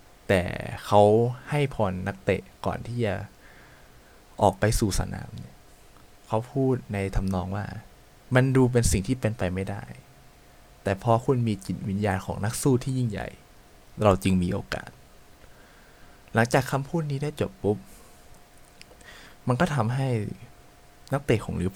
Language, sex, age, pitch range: Thai, male, 20-39, 95-125 Hz